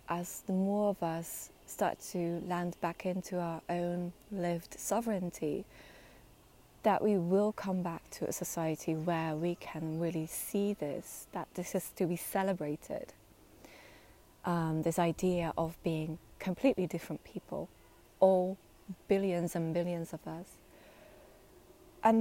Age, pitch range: 20-39, 170-205 Hz